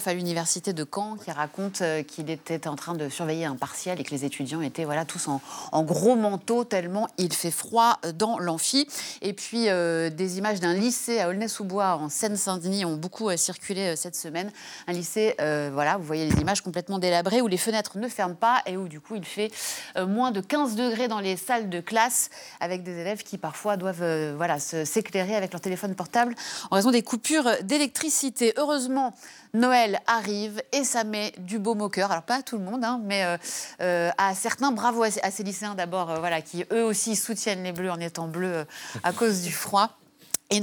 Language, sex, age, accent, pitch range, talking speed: French, female, 30-49, French, 170-225 Hz, 205 wpm